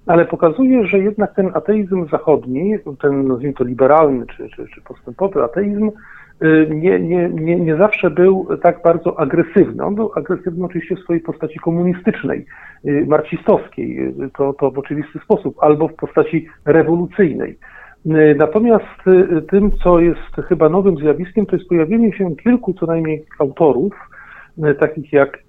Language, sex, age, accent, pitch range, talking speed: Polish, male, 50-69, native, 145-195 Hz, 140 wpm